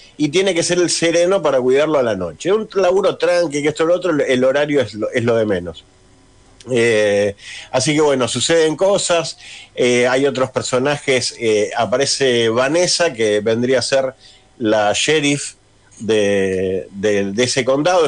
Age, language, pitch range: 50-69, Spanish, 105-160 Hz